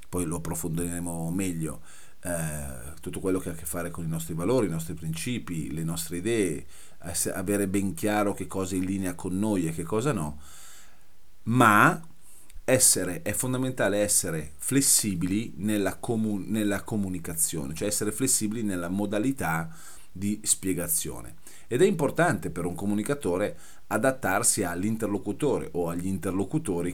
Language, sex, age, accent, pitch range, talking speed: Italian, male, 40-59, native, 85-115 Hz, 145 wpm